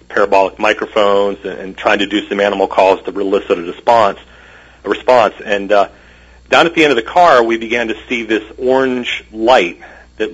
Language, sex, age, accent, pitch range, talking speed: English, male, 40-59, American, 95-120 Hz, 190 wpm